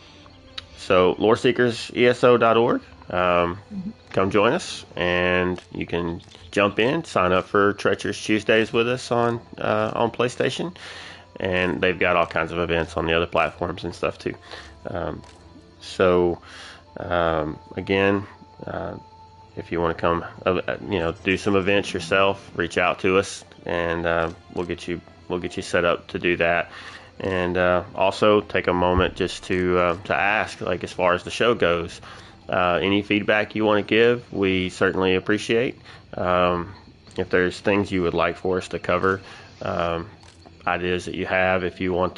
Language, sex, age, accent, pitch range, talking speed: English, male, 20-39, American, 90-105 Hz, 165 wpm